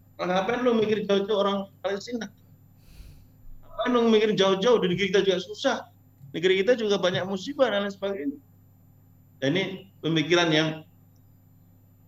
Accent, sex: native, male